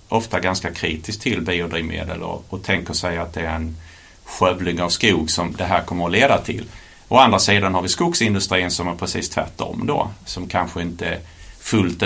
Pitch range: 85-100 Hz